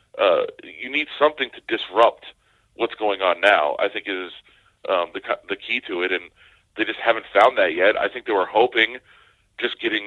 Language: English